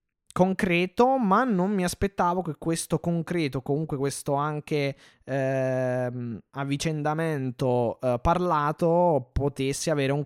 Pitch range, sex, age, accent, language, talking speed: 125-155 Hz, male, 20-39, native, Italian, 105 wpm